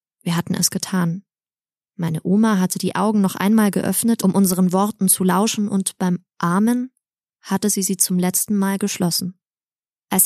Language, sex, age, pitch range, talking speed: German, female, 20-39, 180-215 Hz, 165 wpm